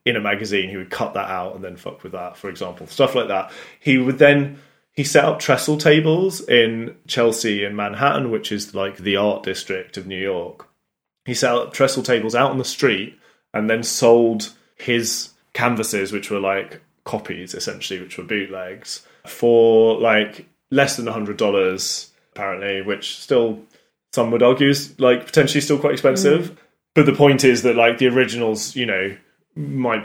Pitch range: 105-130 Hz